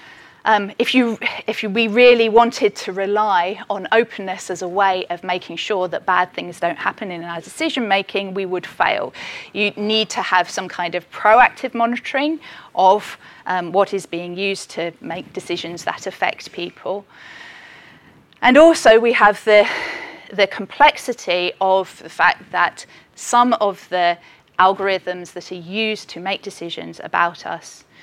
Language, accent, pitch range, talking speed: English, British, 175-215 Hz, 150 wpm